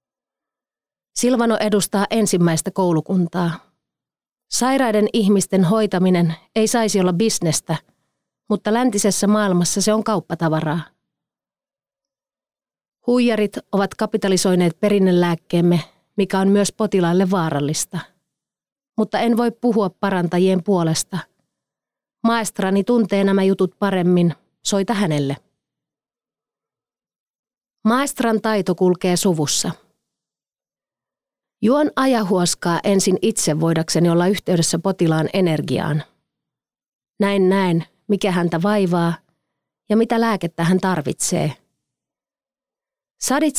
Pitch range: 175-220 Hz